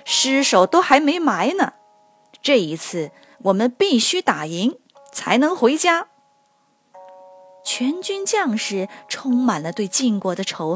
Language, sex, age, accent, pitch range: Chinese, female, 20-39, native, 175-270 Hz